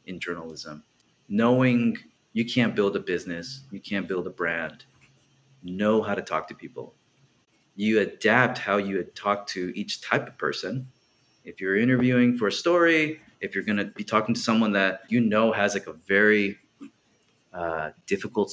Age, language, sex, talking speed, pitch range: 30-49, English, male, 170 wpm, 100-130 Hz